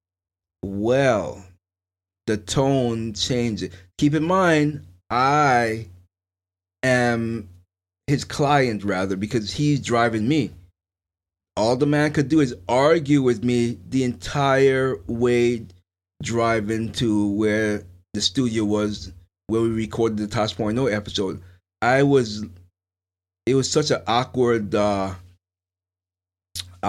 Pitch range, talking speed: 90-115 Hz, 105 wpm